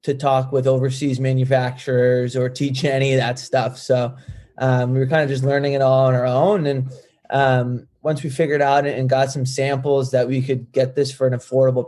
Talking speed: 210 wpm